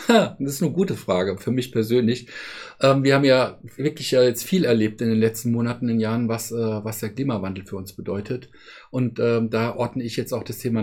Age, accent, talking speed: 50-69, German, 205 wpm